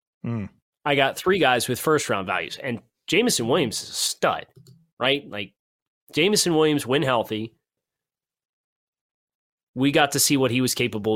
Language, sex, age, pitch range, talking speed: English, male, 20-39, 115-145 Hz, 145 wpm